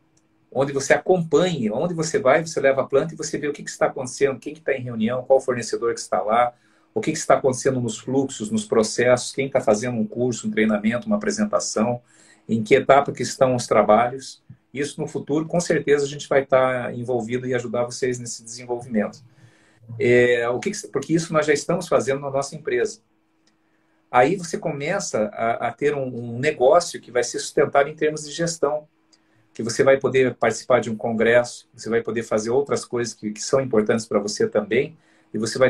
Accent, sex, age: Brazilian, male, 50-69